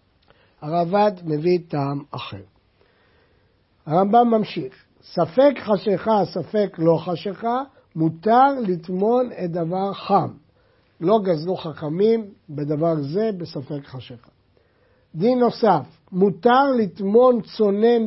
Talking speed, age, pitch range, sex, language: 95 wpm, 50-69, 160-230 Hz, male, Hebrew